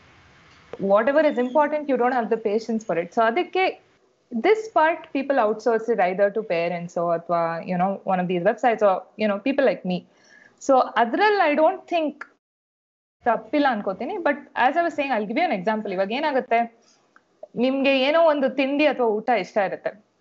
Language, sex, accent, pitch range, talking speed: Kannada, female, native, 205-285 Hz, 185 wpm